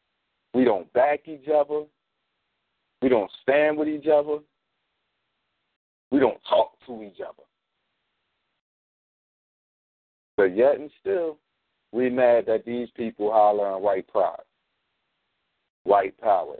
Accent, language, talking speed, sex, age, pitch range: American, English, 115 wpm, male, 50-69, 130-185 Hz